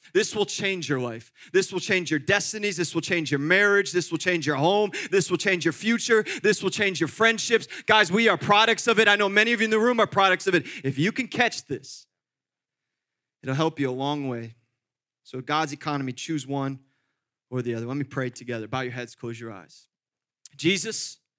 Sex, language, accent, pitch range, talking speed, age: male, English, American, 135-185 Hz, 220 wpm, 30-49